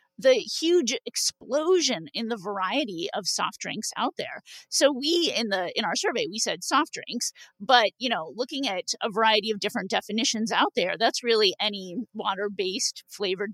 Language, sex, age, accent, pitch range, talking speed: English, female, 30-49, American, 200-270 Hz, 175 wpm